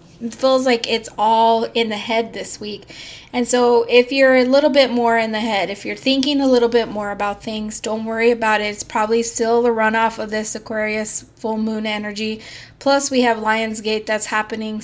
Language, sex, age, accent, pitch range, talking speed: English, female, 20-39, American, 215-250 Hz, 210 wpm